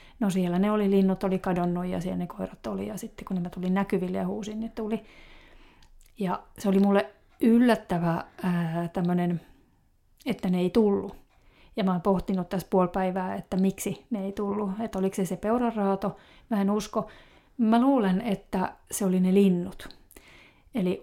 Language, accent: Finnish, native